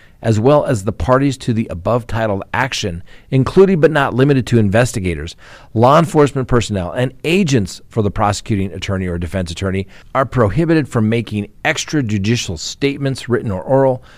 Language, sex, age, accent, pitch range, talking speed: English, male, 50-69, American, 100-130 Hz, 155 wpm